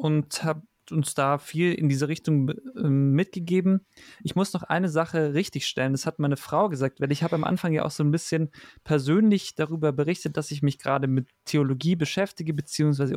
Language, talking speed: German, 185 wpm